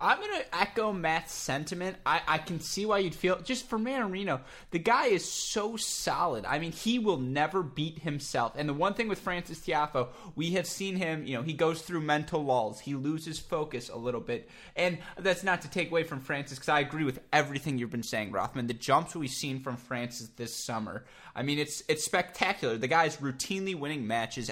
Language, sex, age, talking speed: English, male, 20-39, 215 wpm